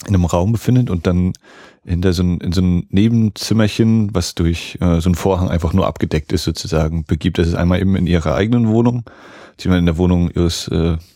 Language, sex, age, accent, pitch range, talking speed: German, male, 30-49, German, 85-95 Hz, 200 wpm